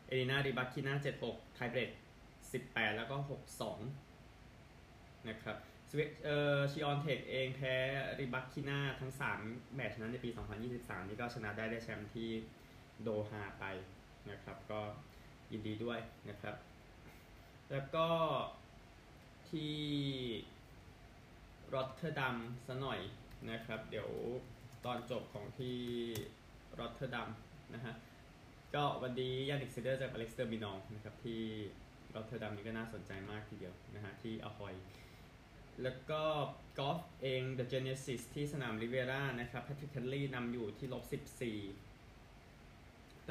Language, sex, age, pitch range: Thai, male, 20-39, 105-130 Hz